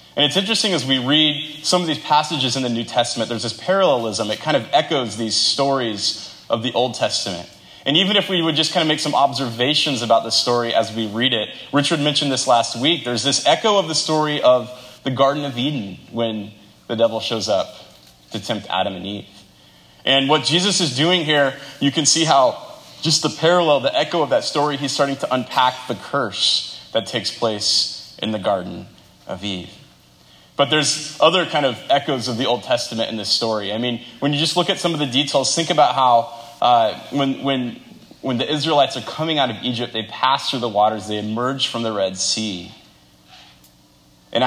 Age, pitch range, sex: 20-39, 105-145 Hz, male